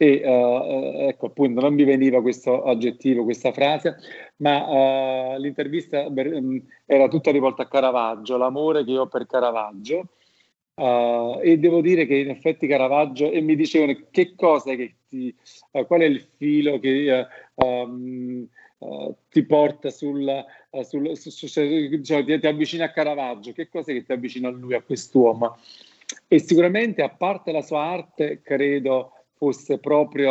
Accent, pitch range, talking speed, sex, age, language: native, 130-155 Hz, 155 wpm, male, 40-59, Italian